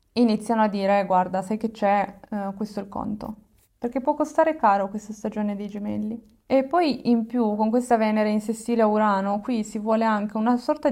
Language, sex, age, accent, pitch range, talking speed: Italian, female, 20-39, native, 205-235 Hz, 205 wpm